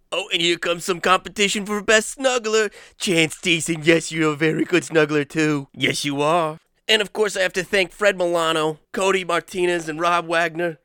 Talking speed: 195 wpm